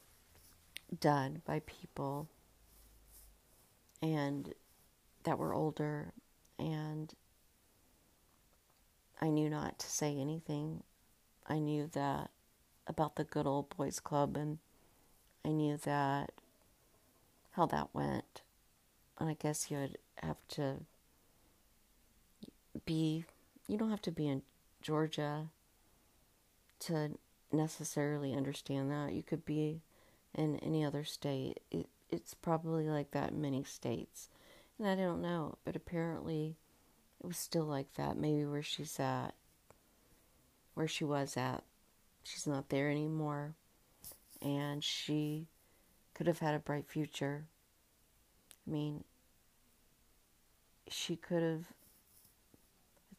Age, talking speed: 50-69, 115 wpm